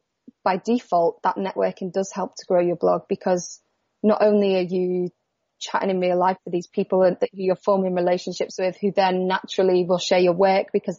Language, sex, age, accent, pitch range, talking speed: English, female, 20-39, British, 185-205 Hz, 190 wpm